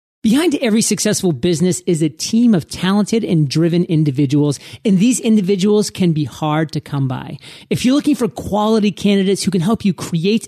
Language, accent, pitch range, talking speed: English, American, 160-210 Hz, 185 wpm